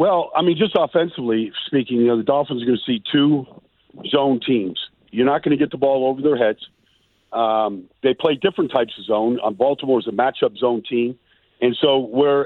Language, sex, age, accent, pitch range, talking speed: English, male, 50-69, American, 120-145 Hz, 195 wpm